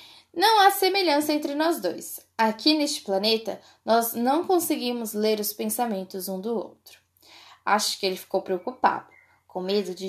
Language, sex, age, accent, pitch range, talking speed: Portuguese, female, 10-29, Brazilian, 195-275 Hz, 155 wpm